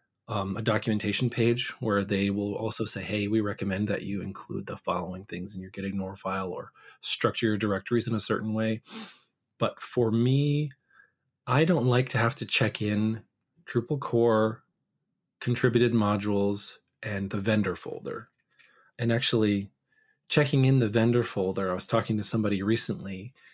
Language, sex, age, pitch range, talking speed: English, male, 20-39, 105-125 Hz, 160 wpm